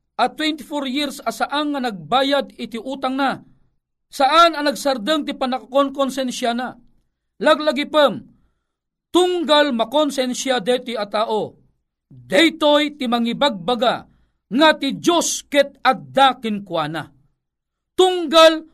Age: 40-59